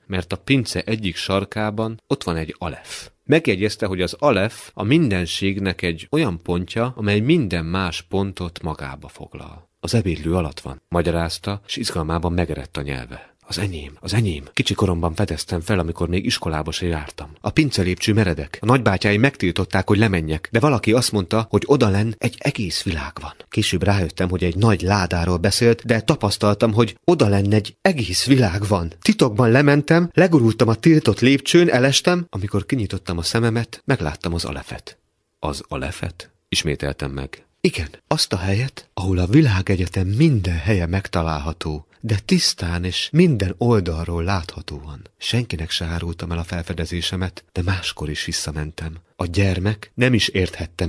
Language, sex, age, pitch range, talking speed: Hungarian, male, 30-49, 85-110 Hz, 150 wpm